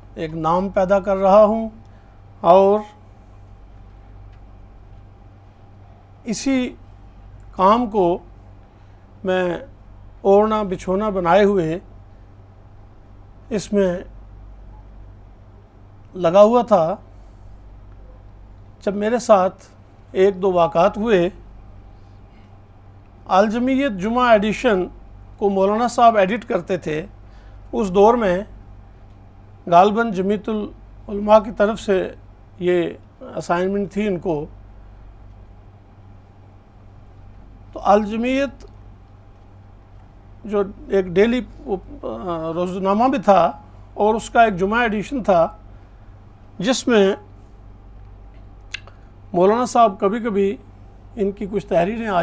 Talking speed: 85 wpm